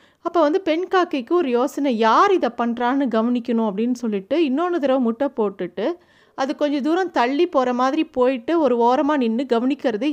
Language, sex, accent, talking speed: Tamil, female, native, 160 wpm